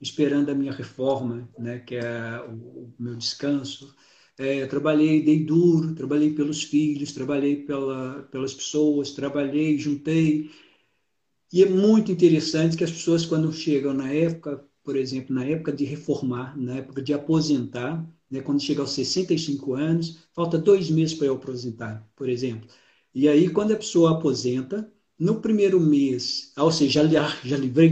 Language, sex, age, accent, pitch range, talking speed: Portuguese, male, 50-69, Brazilian, 135-165 Hz, 155 wpm